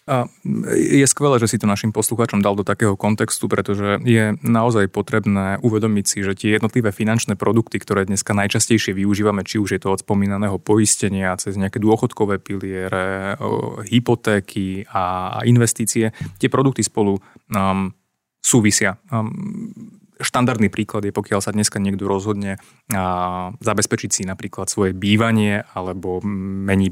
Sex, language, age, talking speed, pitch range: male, Slovak, 20-39, 130 wpm, 100-110 Hz